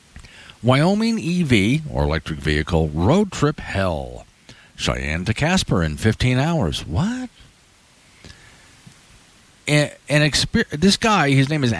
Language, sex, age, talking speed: English, male, 50-69, 115 wpm